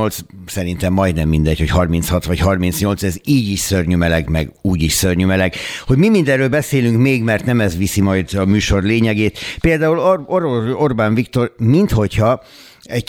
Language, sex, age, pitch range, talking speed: Hungarian, male, 60-79, 90-110 Hz, 160 wpm